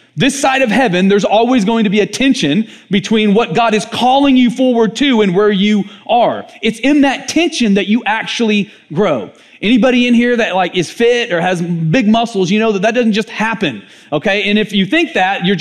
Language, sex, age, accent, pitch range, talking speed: English, male, 30-49, American, 185-240 Hz, 215 wpm